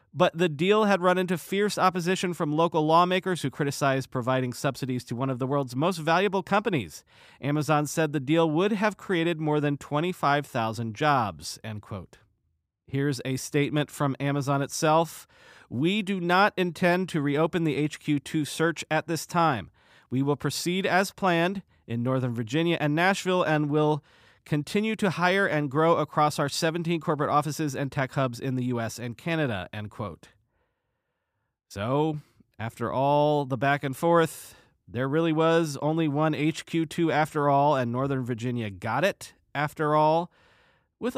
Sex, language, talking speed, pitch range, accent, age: male, English, 160 wpm, 130-170 Hz, American, 40-59